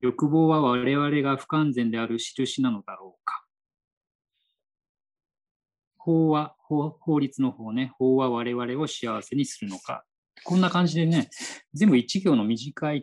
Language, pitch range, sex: Japanese, 115-165 Hz, male